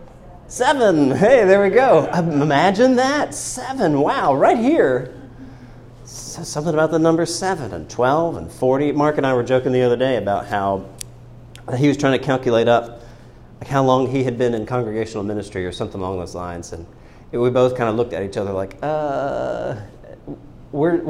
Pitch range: 120-160 Hz